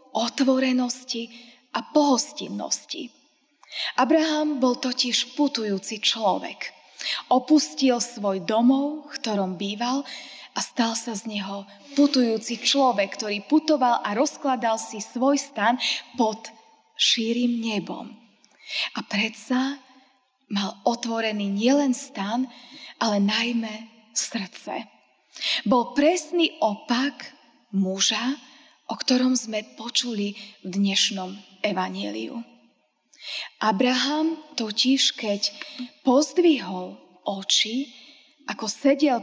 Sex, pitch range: female, 220-275 Hz